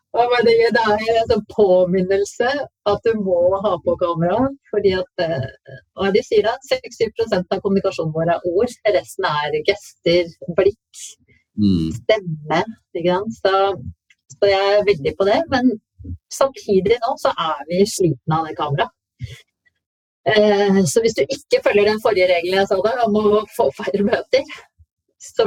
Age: 30-49